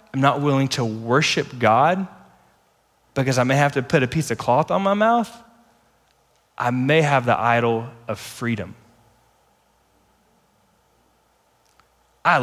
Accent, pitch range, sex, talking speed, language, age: American, 115-155 Hz, male, 125 wpm, English, 20-39